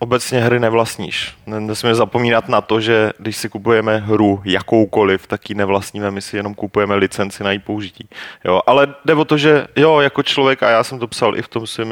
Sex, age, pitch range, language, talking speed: male, 30-49, 105-115 Hz, Czech, 210 wpm